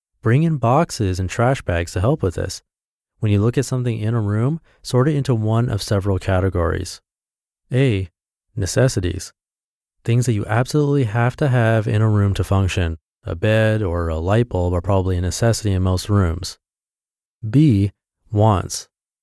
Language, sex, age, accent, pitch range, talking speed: English, male, 30-49, American, 95-130 Hz, 170 wpm